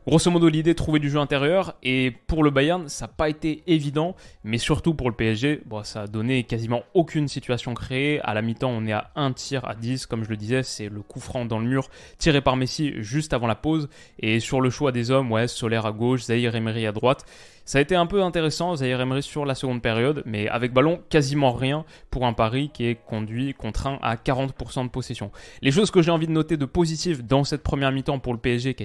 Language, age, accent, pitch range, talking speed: French, 20-39, French, 115-150 Hz, 240 wpm